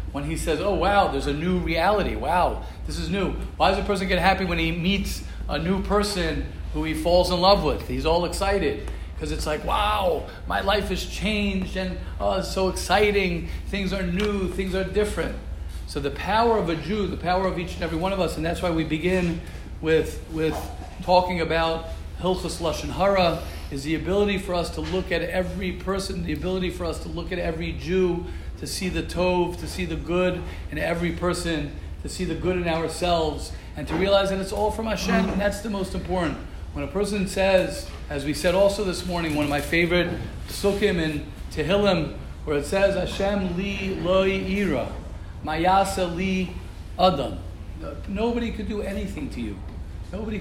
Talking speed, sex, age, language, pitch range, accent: 195 wpm, male, 40-59, English, 155-190 Hz, American